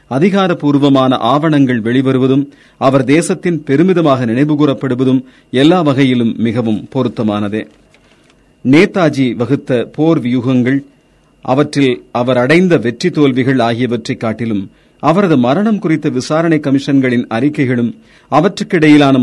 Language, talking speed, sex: Tamil, 90 wpm, male